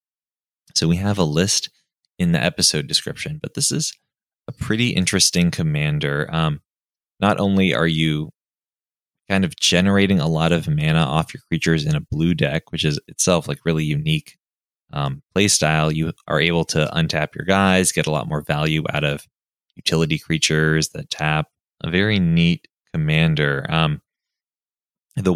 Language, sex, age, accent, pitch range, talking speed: English, male, 20-39, American, 80-95 Hz, 160 wpm